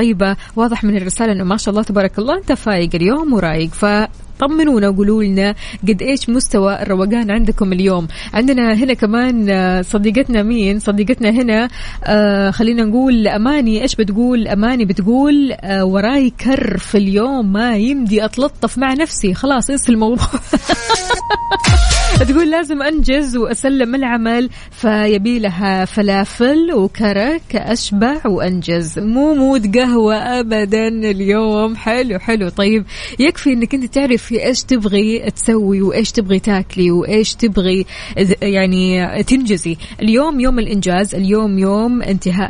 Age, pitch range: 20-39, 195-240 Hz